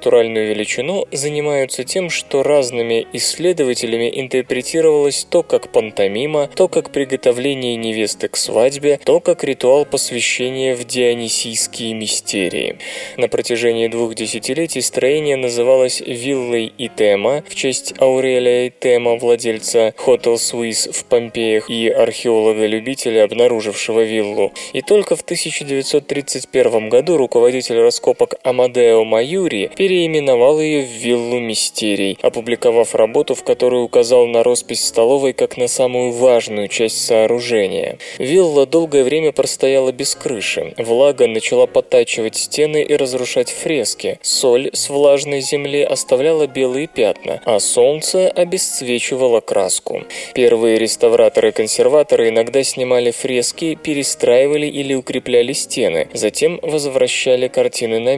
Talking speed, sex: 115 wpm, male